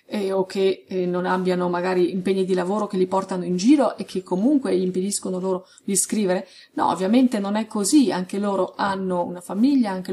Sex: female